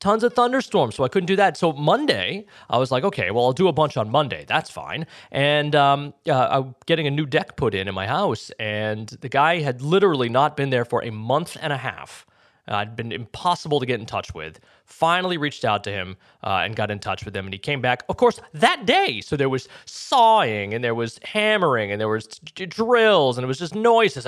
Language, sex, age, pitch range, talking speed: English, male, 20-39, 115-180 Hz, 235 wpm